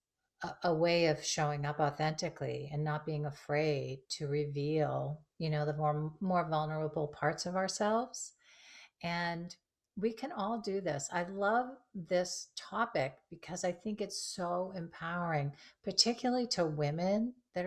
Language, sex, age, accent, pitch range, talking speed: English, female, 40-59, American, 155-185 Hz, 140 wpm